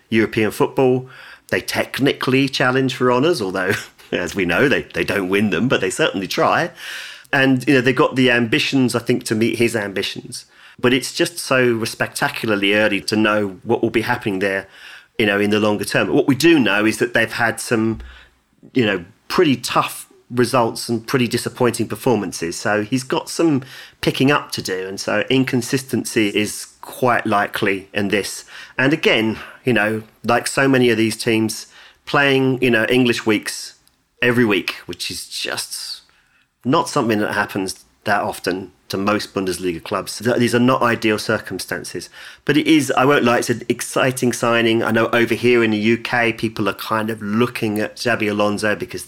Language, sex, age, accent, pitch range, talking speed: English, male, 40-59, British, 105-125 Hz, 180 wpm